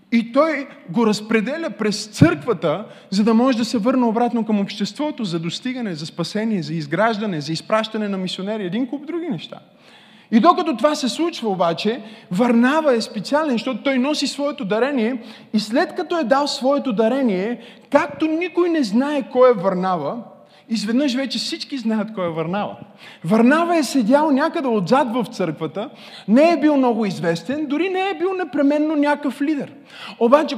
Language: Bulgarian